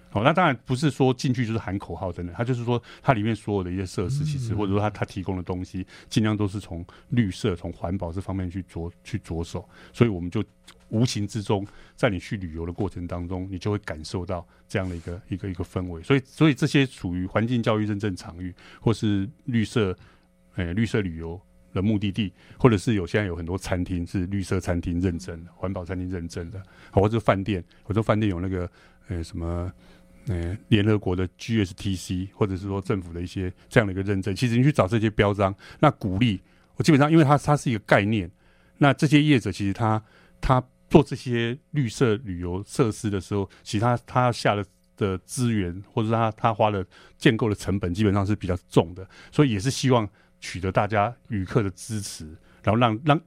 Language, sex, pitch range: Chinese, male, 90-120 Hz